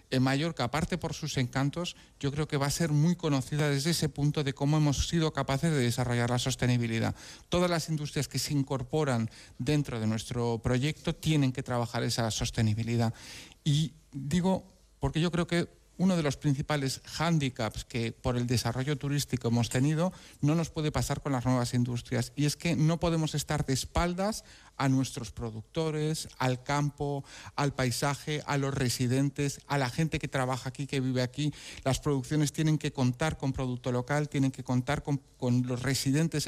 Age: 50-69